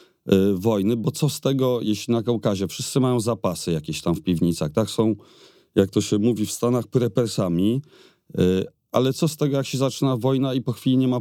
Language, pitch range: Polish, 105-130 Hz